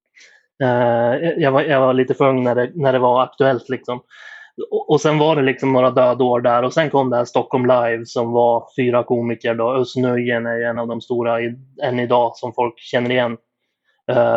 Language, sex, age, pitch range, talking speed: Swedish, male, 20-39, 120-135 Hz, 215 wpm